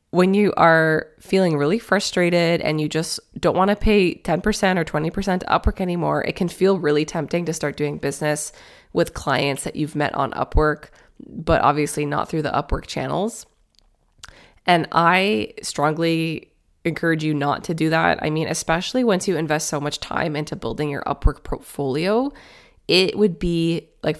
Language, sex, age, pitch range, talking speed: English, female, 20-39, 150-180 Hz, 170 wpm